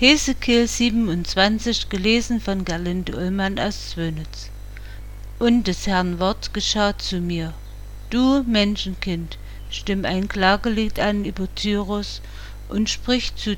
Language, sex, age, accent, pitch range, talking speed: German, female, 50-69, German, 165-210 Hz, 115 wpm